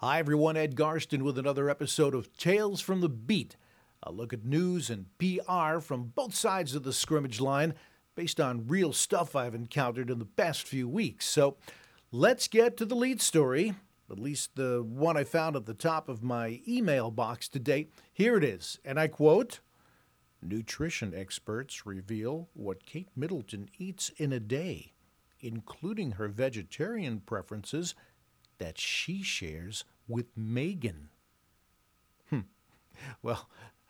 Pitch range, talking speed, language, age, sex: 115-160 Hz, 150 wpm, English, 50-69, male